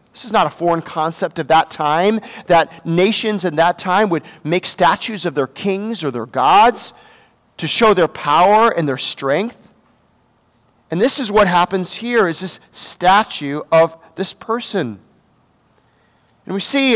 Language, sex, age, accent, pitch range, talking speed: English, male, 40-59, American, 160-210 Hz, 160 wpm